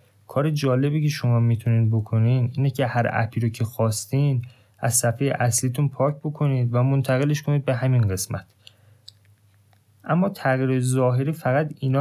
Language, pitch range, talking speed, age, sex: Persian, 105-130 Hz, 145 wpm, 20-39, male